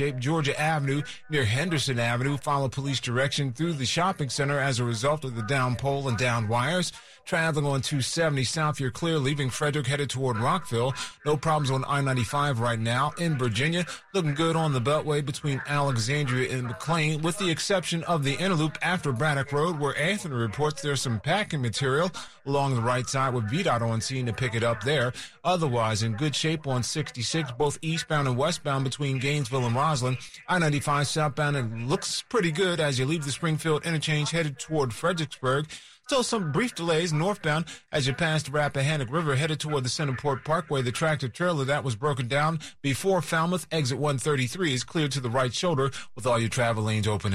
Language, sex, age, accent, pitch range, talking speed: English, male, 30-49, American, 125-160 Hz, 185 wpm